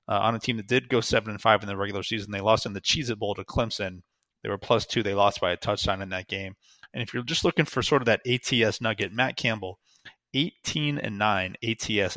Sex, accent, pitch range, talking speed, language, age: male, American, 100-125 Hz, 250 wpm, English, 30-49